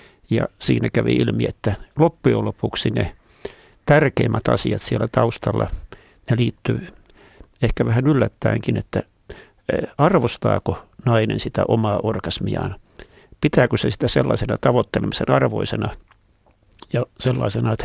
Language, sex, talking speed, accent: Finnish, male, 110 wpm, native